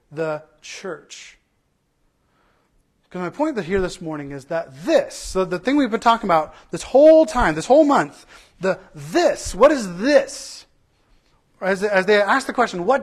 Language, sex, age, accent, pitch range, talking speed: English, male, 40-59, American, 185-265 Hz, 160 wpm